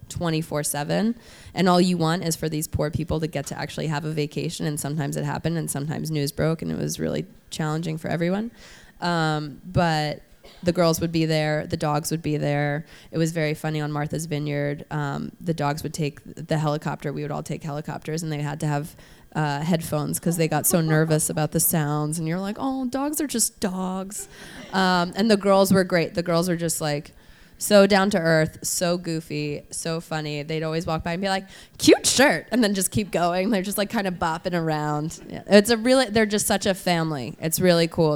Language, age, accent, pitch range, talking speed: English, 20-39, American, 150-180 Hz, 215 wpm